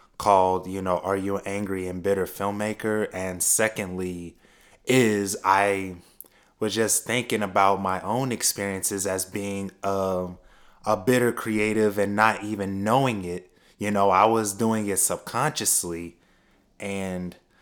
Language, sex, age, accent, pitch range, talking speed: English, male, 20-39, American, 95-110 Hz, 135 wpm